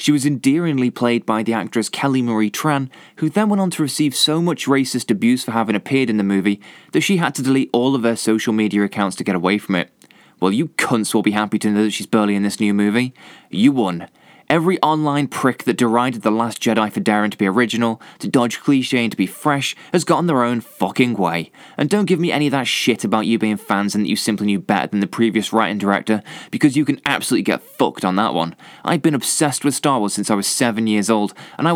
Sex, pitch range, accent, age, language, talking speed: male, 110-145 Hz, British, 20-39, English, 250 wpm